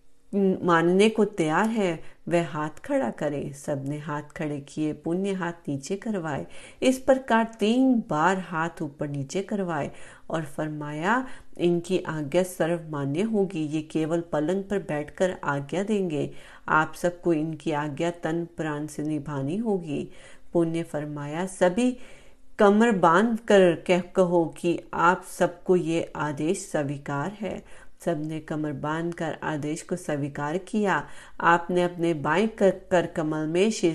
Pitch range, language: 155-190 Hz, Hindi